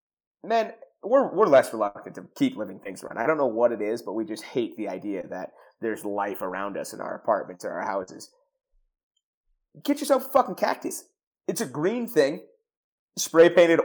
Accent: American